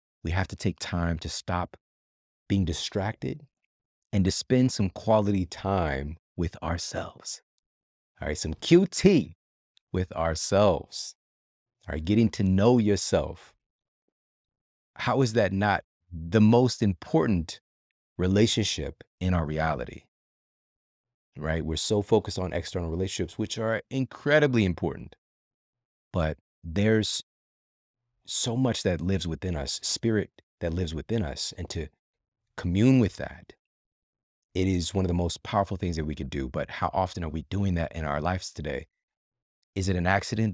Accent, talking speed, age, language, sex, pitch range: American, 140 wpm, 30-49, English, male, 80-105 Hz